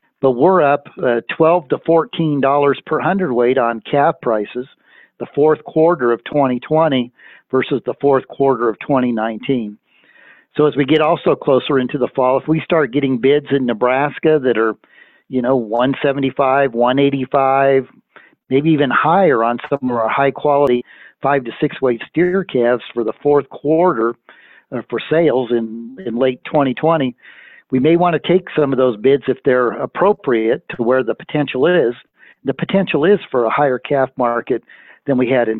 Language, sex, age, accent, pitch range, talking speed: English, male, 50-69, American, 125-145 Hz, 165 wpm